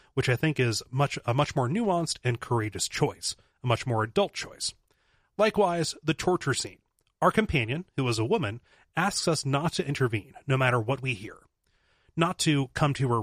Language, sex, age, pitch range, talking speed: English, male, 30-49, 115-155 Hz, 190 wpm